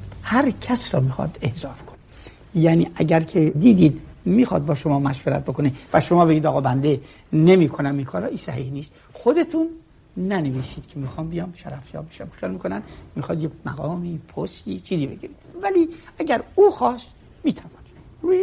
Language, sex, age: Persian, male, 60-79